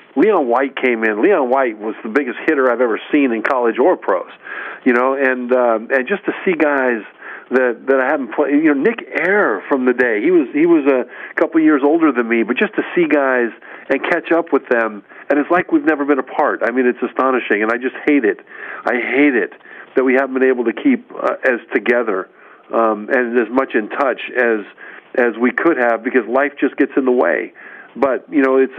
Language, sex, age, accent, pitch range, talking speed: English, male, 50-69, American, 120-160 Hz, 225 wpm